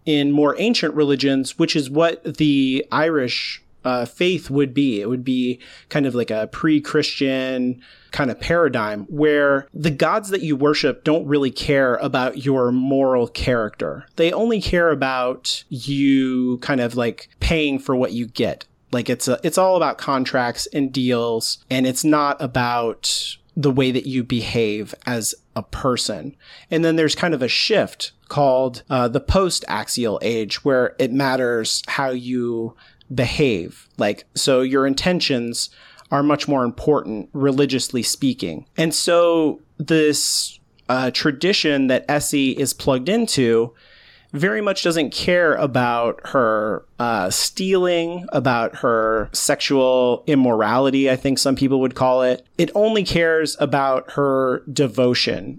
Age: 40-59